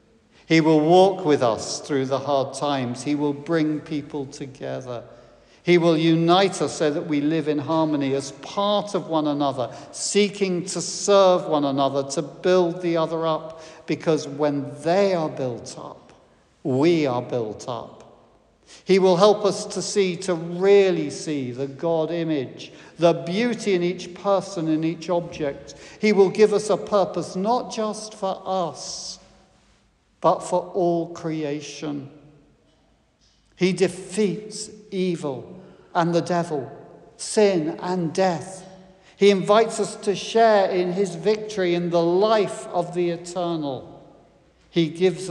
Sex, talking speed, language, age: male, 140 wpm, English, 60-79